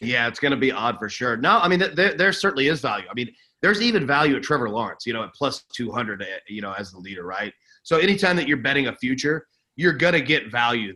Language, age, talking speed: English, 30-49, 255 wpm